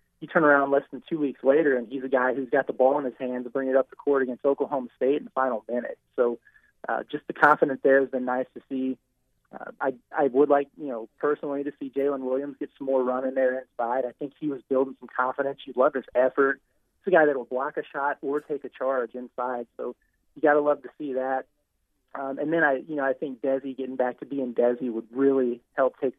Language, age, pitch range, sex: English, 30-49, 130-150 Hz, male